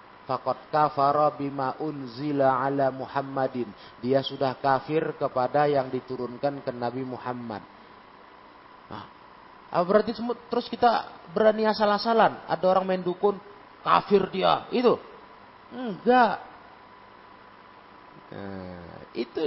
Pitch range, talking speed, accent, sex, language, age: 120-185 Hz, 90 wpm, native, male, Indonesian, 30-49